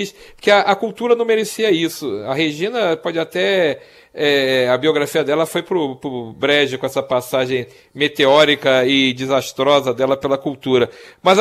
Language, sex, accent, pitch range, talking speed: Portuguese, male, Brazilian, 145-205 Hz, 155 wpm